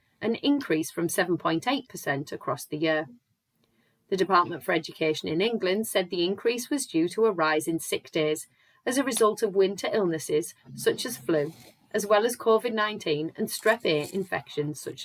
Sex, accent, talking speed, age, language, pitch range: female, British, 170 wpm, 30-49, English, 165-220 Hz